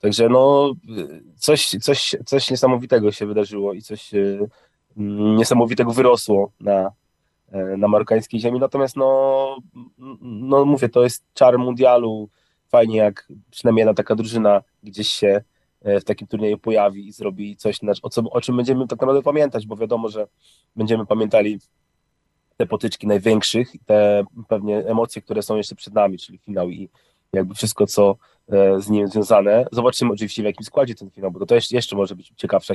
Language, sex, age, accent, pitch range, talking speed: Polish, male, 20-39, native, 100-120 Hz, 175 wpm